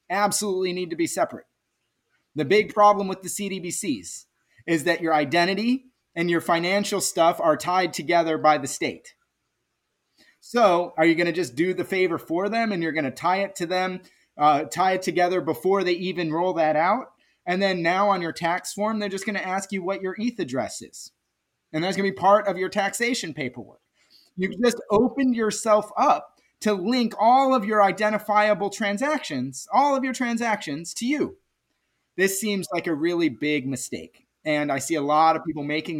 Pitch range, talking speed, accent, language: 155-200 Hz, 190 wpm, American, English